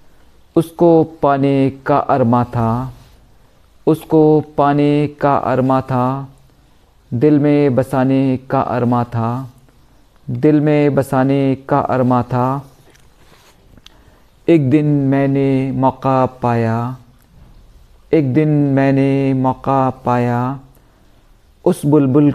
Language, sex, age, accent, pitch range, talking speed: Hindi, male, 50-69, native, 125-140 Hz, 90 wpm